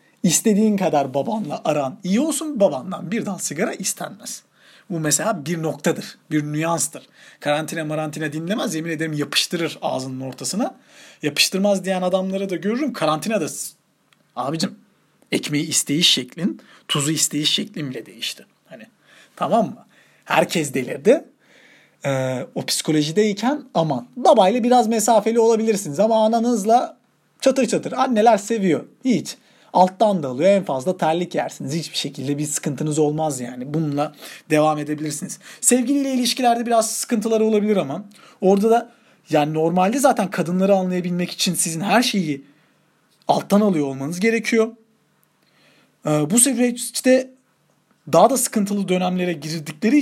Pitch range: 155-230 Hz